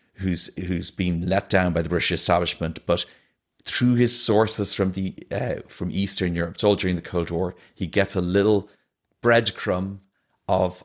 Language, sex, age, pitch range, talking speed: English, male, 40-59, 90-110 Hz, 170 wpm